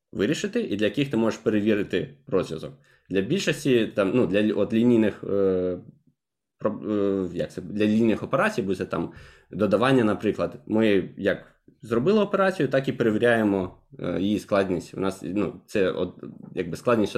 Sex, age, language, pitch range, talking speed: male, 20-39, Ukrainian, 100-135 Hz, 145 wpm